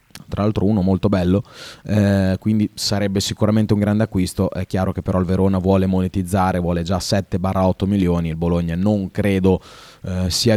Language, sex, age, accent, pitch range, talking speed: Italian, male, 30-49, native, 95-110 Hz, 170 wpm